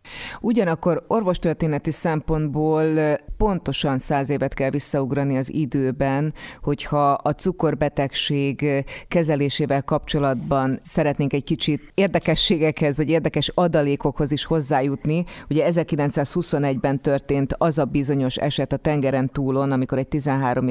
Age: 30-49